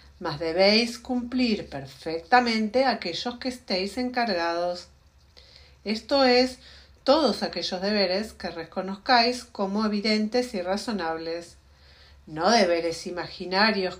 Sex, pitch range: female, 170-245 Hz